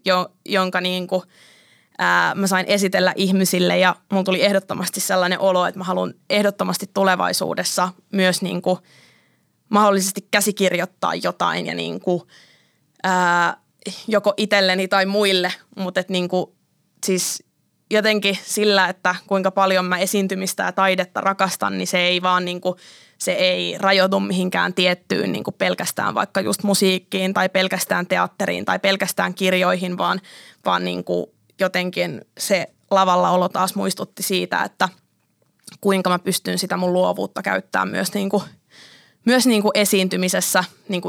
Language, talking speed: Finnish, 115 wpm